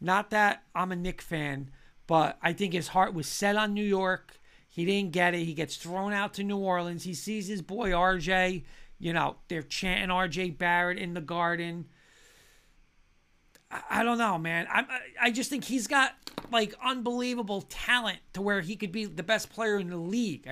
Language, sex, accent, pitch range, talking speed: English, male, American, 165-210 Hz, 190 wpm